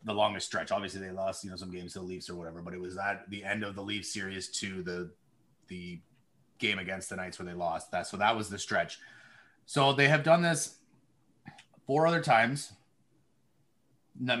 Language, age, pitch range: English, 30-49, 110-130 Hz